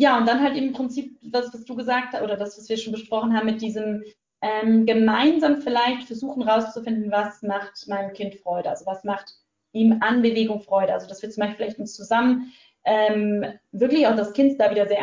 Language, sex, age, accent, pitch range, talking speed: German, female, 20-39, German, 205-245 Hz, 210 wpm